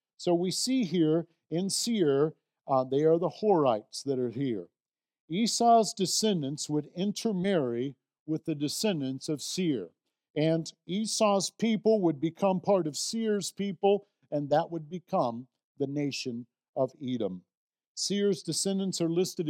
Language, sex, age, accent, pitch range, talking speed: English, male, 50-69, American, 140-180 Hz, 135 wpm